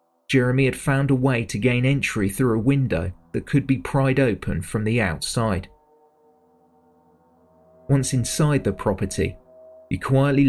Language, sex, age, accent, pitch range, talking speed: English, male, 30-49, British, 95-135 Hz, 145 wpm